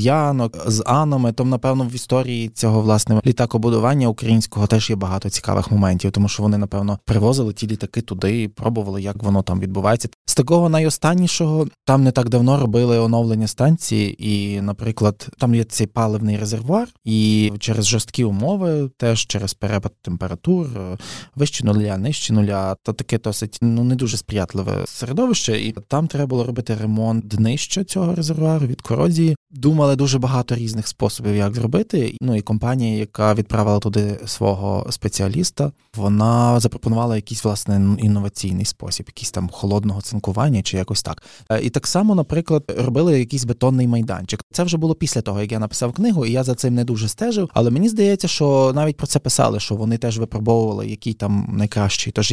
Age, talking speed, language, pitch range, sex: 20-39, 165 wpm, Ukrainian, 105-135 Hz, male